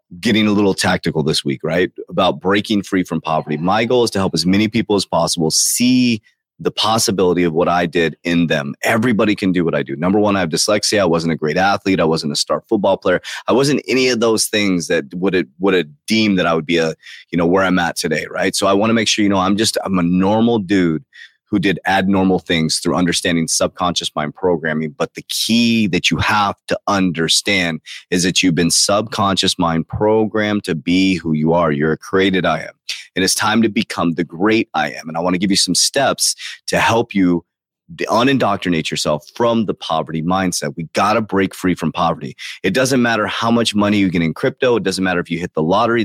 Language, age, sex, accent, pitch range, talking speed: English, 30-49, male, American, 85-105 Hz, 230 wpm